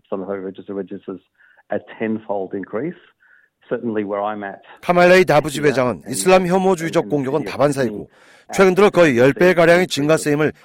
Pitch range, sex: 130-180 Hz, male